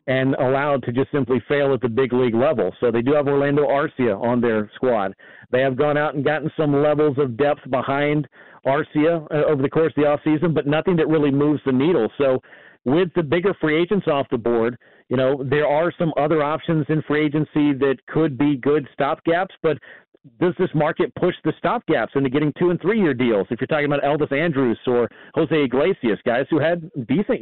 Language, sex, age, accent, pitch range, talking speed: English, male, 40-59, American, 130-155 Hz, 215 wpm